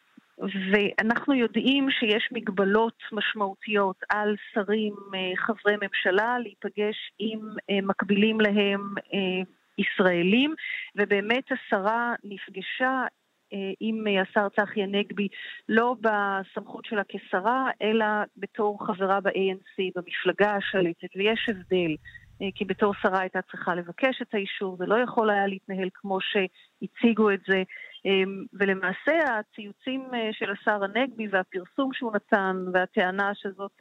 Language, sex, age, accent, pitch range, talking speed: Hebrew, female, 40-59, native, 195-225 Hz, 105 wpm